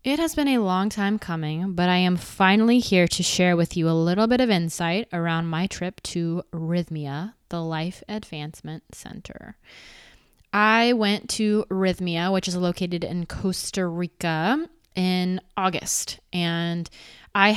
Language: English